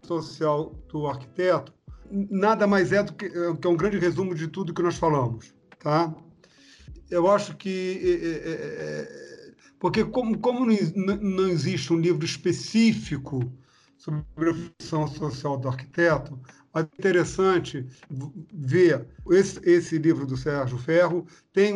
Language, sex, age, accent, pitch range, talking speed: Portuguese, male, 50-69, Brazilian, 150-190 Hz, 140 wpm